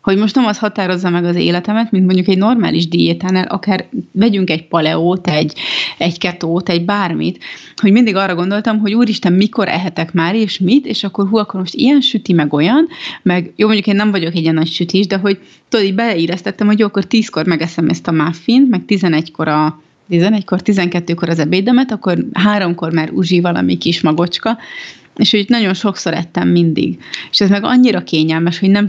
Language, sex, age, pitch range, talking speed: Hungarian, female, 30-49, 170-210 Hz, 190 wpm